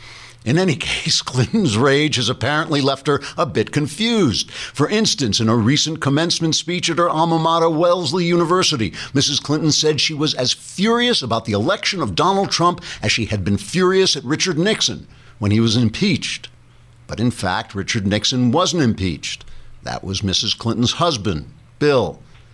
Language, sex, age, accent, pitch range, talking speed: English, male, 60-79, American, 110-150 Hz, 170 wpm